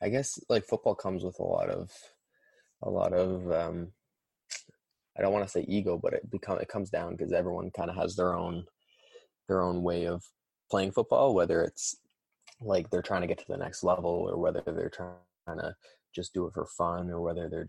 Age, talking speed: 20-39, 210 wpm